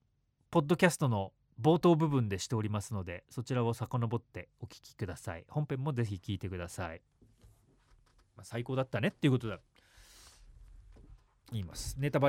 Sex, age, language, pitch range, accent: male, 30-49, Japanese, 105-150 Hz, native